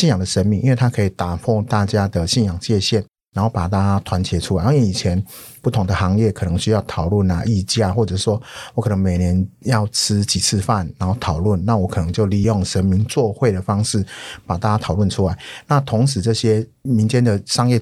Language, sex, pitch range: Chinese, male, 95-115 Hz